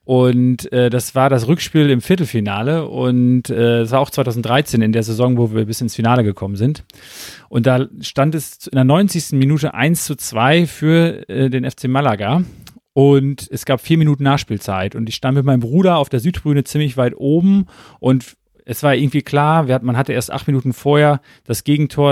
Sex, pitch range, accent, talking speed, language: male, 125-150 Hz, German, 195 wpm, German